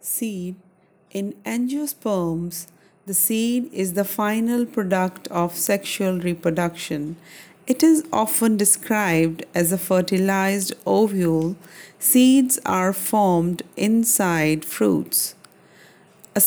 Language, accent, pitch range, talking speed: English, Indian, 170-205 Hz, 95 wpm